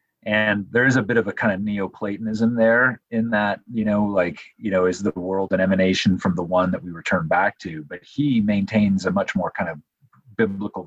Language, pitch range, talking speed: English, 95-110 Hz, 220 wpm